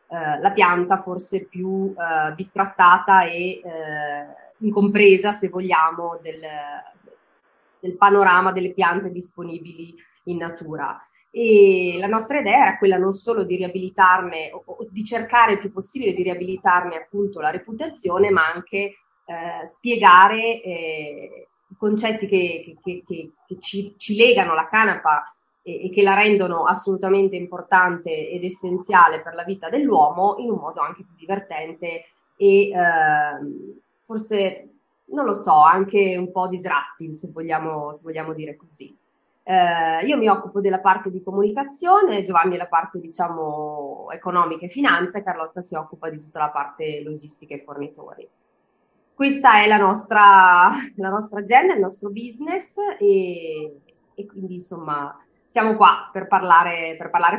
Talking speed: 140 wpm